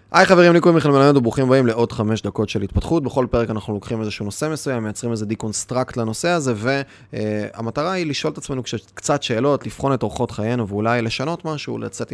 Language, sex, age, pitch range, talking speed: Hebrew, male, 20-39, 105-135 Hz, 205 wpm